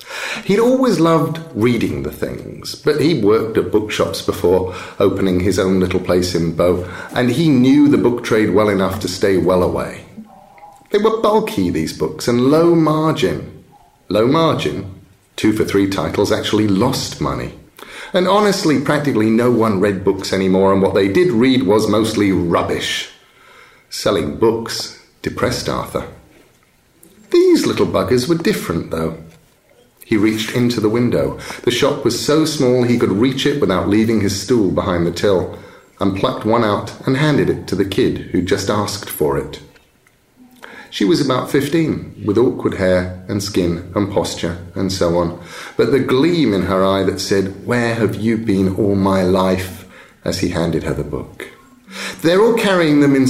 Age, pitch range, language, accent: 40-59, 95-145 Hz, English, British